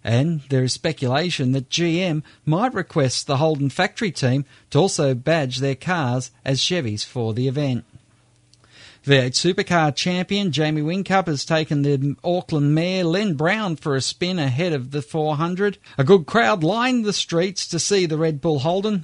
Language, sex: English, male